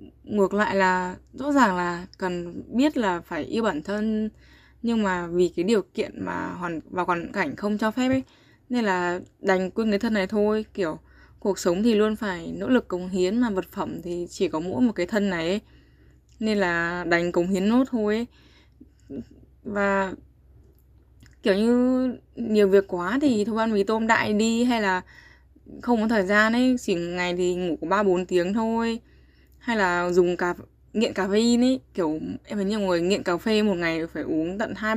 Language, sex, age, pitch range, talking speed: Vietnamese, female, 10-29, 175-225 Hz, 200 wpm